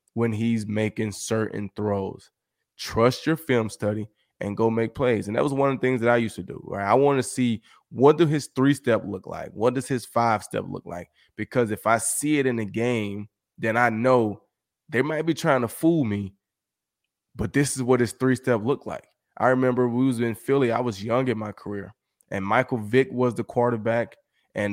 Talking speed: 220 wpm